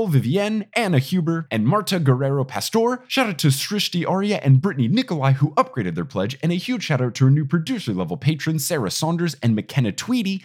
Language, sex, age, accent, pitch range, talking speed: English, male, 20-39, American, 135-160 Hz, 200 wpm